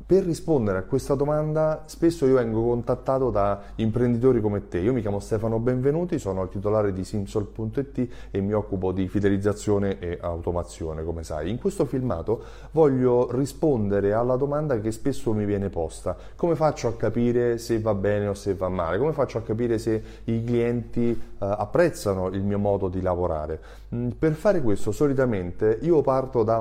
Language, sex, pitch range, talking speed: Italian, male, 100-140 Hz, 170 wpm